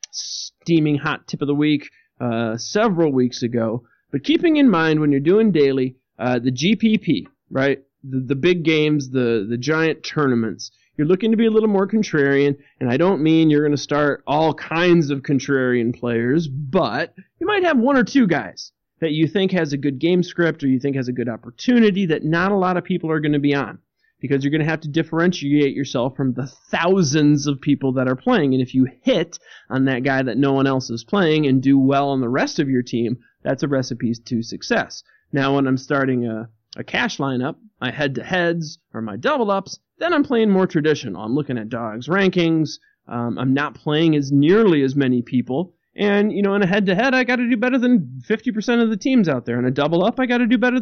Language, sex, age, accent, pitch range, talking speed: English, male, 30-49, American, 130-185 Hz, 220 wpm